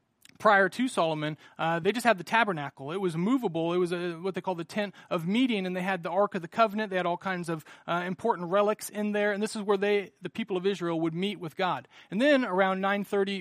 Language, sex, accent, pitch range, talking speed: English, male, American, 170-215 Hz, 250 wpm